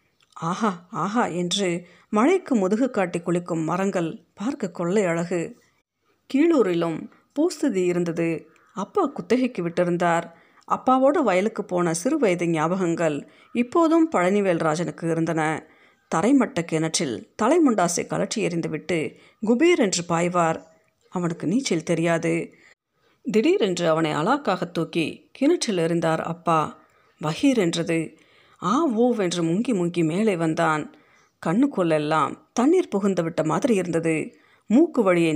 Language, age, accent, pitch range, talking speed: Tamil, 40-59, native, 165-220 Hz, 100 wpm